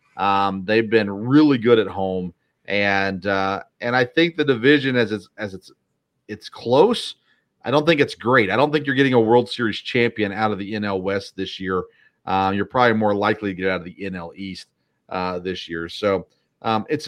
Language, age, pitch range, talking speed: English, 40-59, 100-140 Hz, 205 wpm